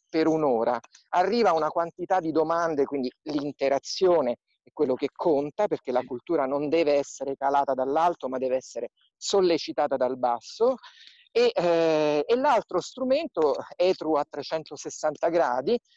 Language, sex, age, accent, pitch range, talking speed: Italian, male, 50-69, native, 145-205 Hz, 130 wpm